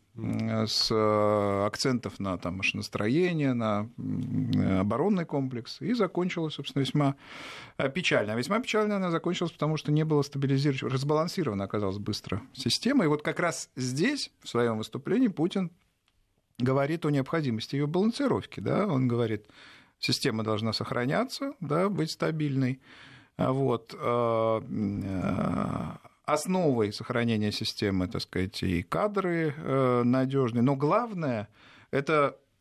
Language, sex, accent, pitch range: Russian, male, native, 110-160 Hz